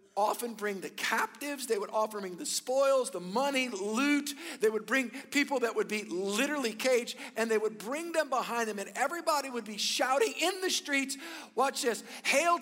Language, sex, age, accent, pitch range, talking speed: English, male, 50-69, American, 195-275 Hz, 190 wpm